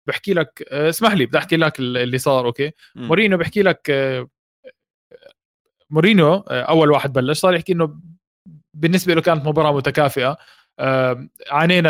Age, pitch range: 20-39, 140-190 Hz